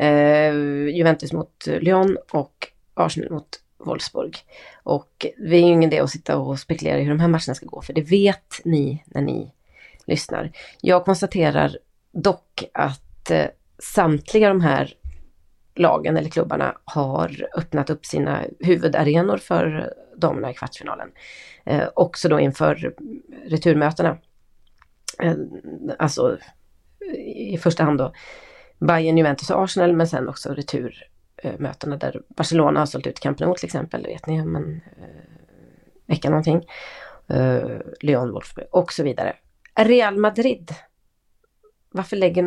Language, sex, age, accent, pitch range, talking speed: Swedish, female, 30-49, native, 145-180 Hz, 135 wpm